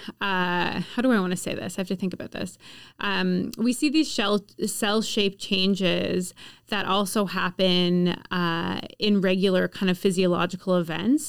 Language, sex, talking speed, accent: English, female, 165 wpm, American